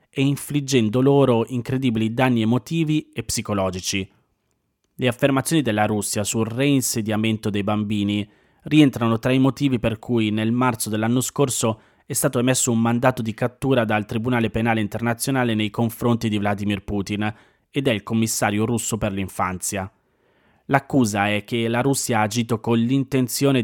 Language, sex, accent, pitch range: Italian, male, native, 105-130 Hz